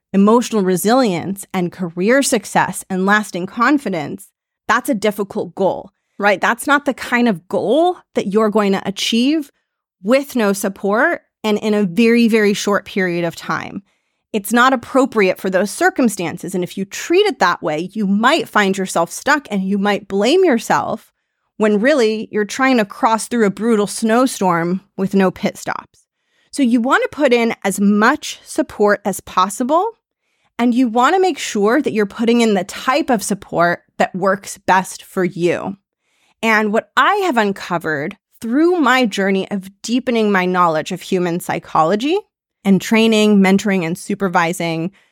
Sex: female